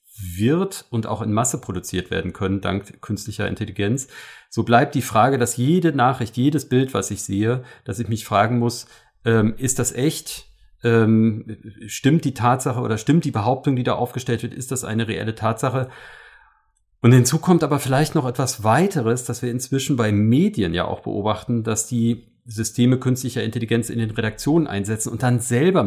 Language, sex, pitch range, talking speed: German, male, 105-125 Hz, 180 wpm